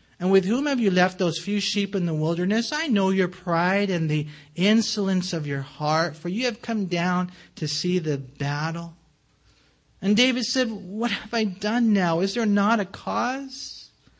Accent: American